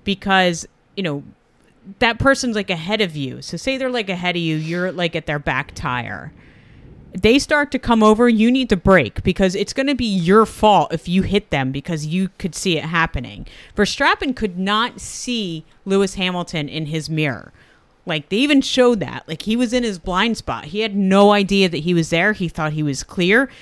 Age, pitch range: 30-49, 160-210 Hz